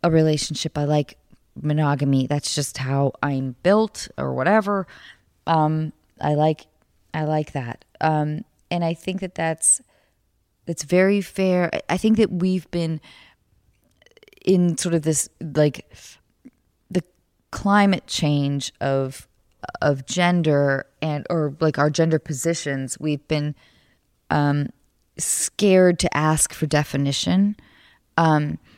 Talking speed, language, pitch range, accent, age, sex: 120 wpm, English, 145-175 Hz, American, 20-39, female